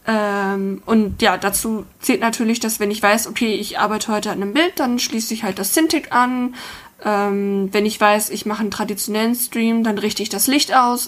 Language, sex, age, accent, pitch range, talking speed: German, female, 20-39, German, 200-235 Hz, 210 wpm